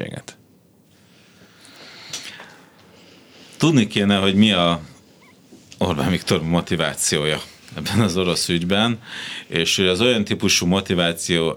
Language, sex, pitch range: Hungarian, male, 75-95 Hz